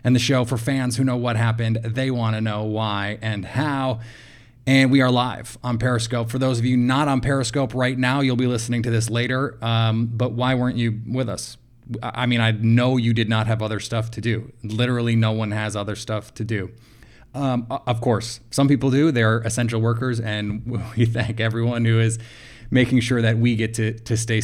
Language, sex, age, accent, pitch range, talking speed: English, male, 20-39, American, 110-125 Hz, 215 wpm